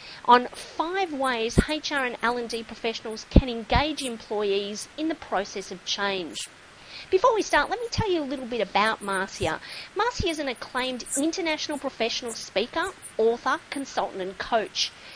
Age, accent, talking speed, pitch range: 40-59, Australian, 155 wpm, 205-280 Hz